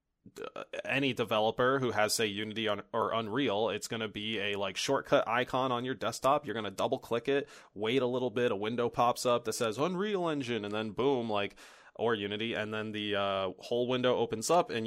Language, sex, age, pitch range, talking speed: English, male, 20-39, 105-130 Hz, 210 wpm